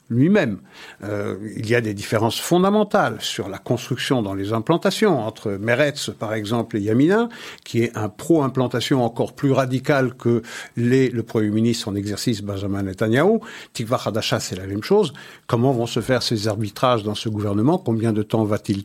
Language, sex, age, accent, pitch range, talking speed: French, male, 60-79, French, 115-145 Hz, 175 wpm